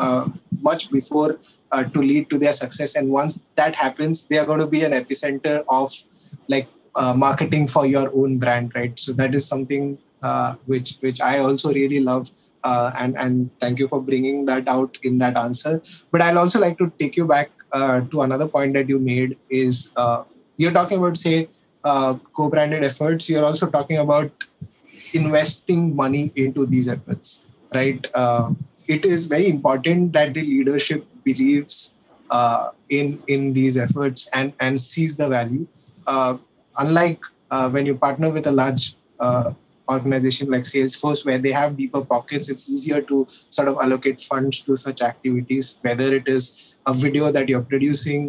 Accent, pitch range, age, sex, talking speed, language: Indian, 130-150 Hz, 20-39, male, 175 wpm, English